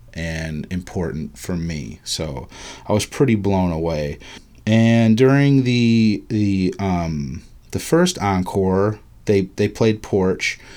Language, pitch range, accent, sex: English, 95-120 Hz, American, male